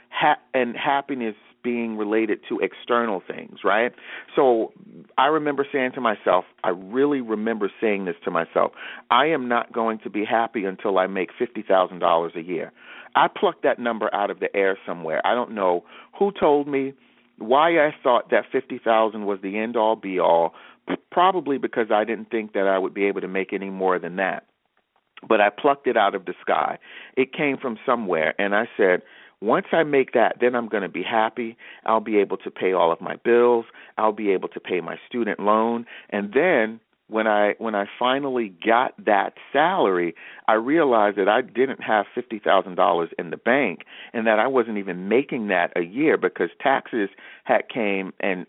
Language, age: English, 40-59